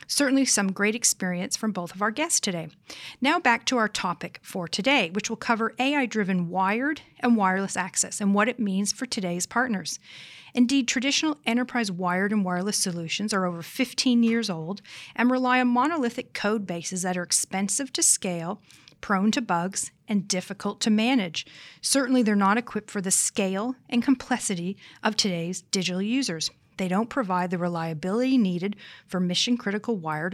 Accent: American